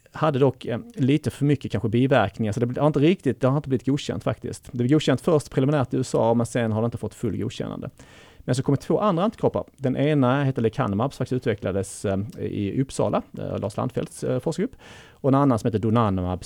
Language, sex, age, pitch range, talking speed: Swedish, male, 30-49, 105-135 Hz, 210 wpm